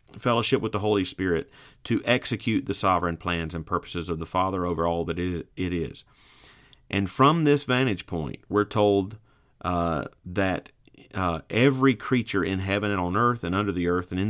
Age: 40-59